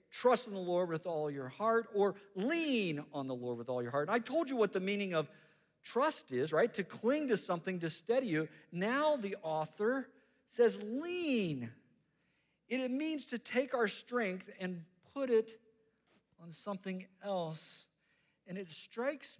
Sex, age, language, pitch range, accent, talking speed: male, 50-69, English, 135-200 Hz, American, 175 wpm